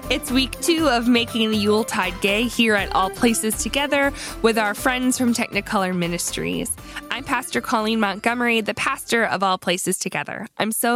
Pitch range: 185-250 Hz